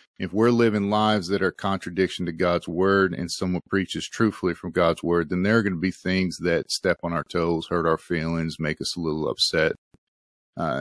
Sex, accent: male, American